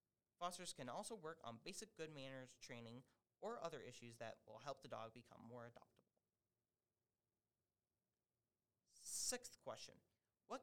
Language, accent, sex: English, American, male